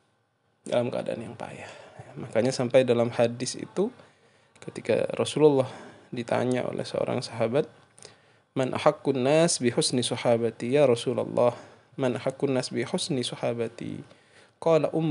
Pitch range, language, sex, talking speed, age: 120-150 Hz, Indonesian, male, 110 wpm, 20-39